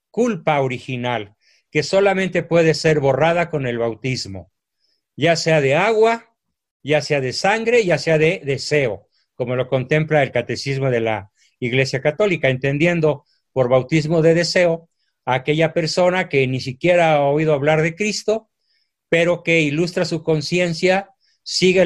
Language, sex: Spanish, male